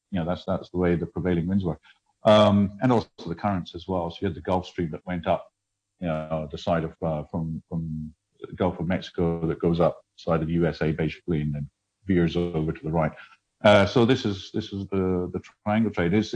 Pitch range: 85-105 Hz